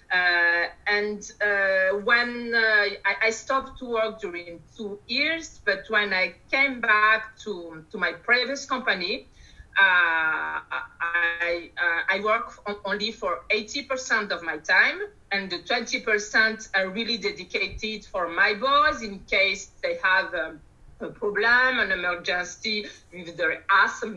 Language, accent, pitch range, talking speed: English, French, 180-255 Hz, 140 wpm